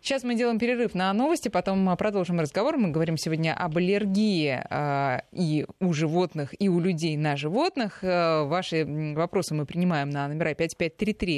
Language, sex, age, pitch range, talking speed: Russian, female, 20-39, 155-200 Hz, 165 wpm